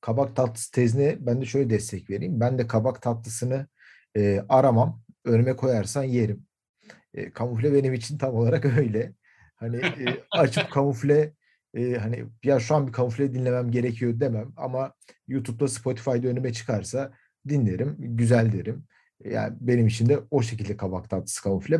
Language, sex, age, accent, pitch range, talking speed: Turkish, male, 50-69, native, 105-130 Hz, 150 wpm